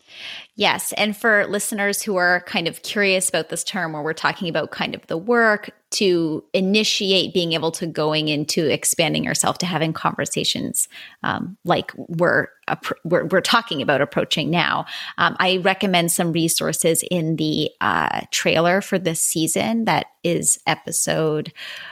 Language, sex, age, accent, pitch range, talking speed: English, female, 30-49, American, 165-200 Hz, 155 wpm